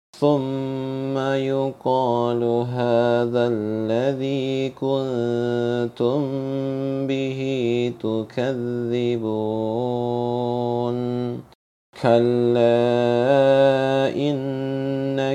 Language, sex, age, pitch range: Indonesian, male, 40-59, 120-135 Hz